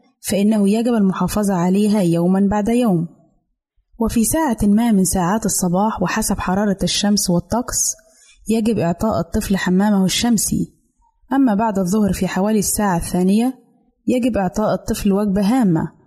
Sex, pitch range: female, 185-230 Hz